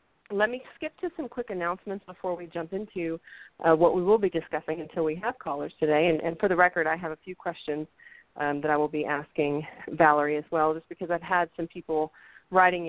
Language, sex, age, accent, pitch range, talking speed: English, female, 40-59, American, 155-185 Hz, 225 wpm